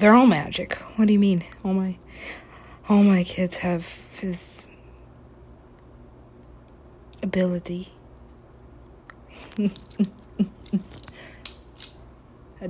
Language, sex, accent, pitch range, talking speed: English, female, American, 170-220 Hz, 75 wpm